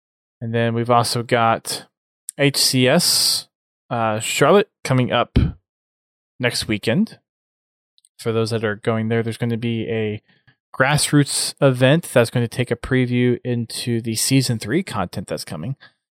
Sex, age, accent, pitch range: male, 20-39, American, 110-130 Hz